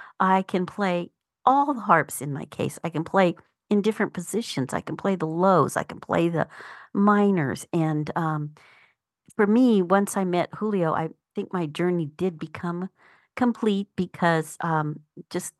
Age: 50-69